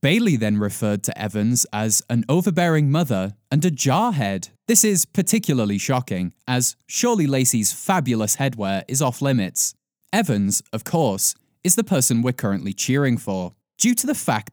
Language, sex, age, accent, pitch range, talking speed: English, male, 20-39, British, 105-165 Hz, 155 wpm